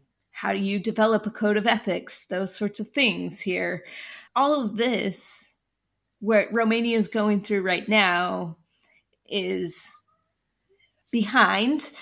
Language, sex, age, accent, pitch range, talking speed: English, female, 30-49, American, 195-230 Hz, 125 wpm